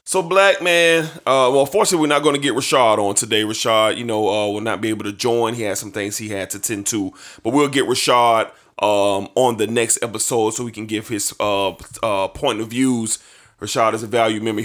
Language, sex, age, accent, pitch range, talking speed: English, male, 30-49, American, 110-155 Hz, 235 wpm